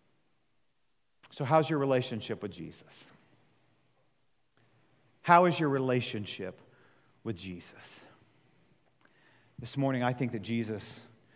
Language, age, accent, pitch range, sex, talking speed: English, 40-59, American, 115-145 Hz, male, 95 wpm